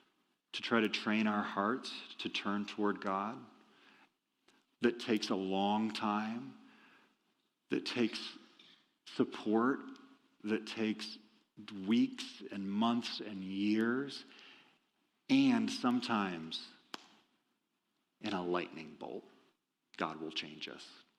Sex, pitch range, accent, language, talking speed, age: male, 100-120 Hz, American, English, 100 wpm, 40-59